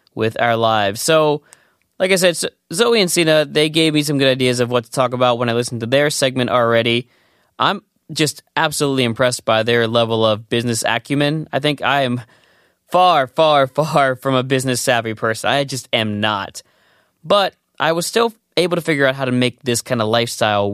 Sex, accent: male, American